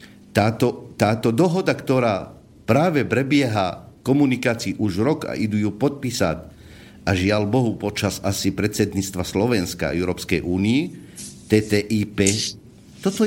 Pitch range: 110-165 Hz